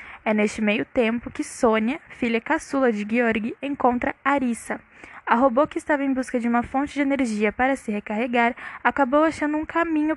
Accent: Brazilian